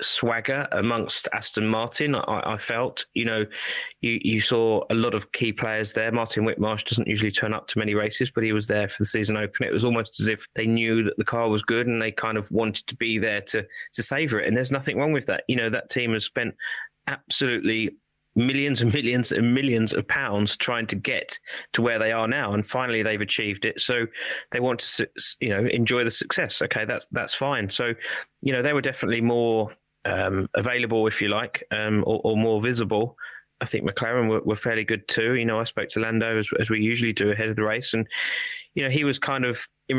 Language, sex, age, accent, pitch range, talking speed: English, male, 20-39, British, 110-120 Hz, 230 wpm